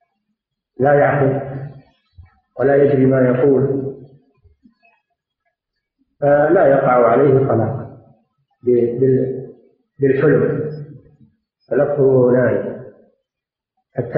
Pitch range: 130-195 Hz